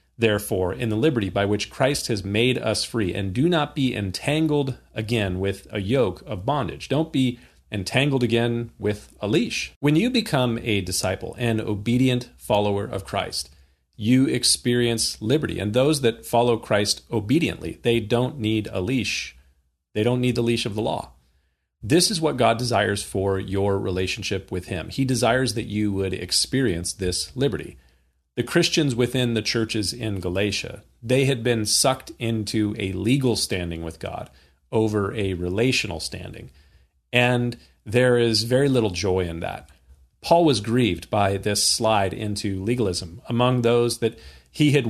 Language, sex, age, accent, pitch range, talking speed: English, male, 40-59, American, 95-120 Hz, 160 wpm